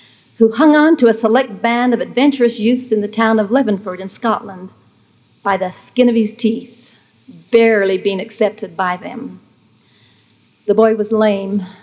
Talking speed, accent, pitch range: 160 wpm, American, 200-230 Hz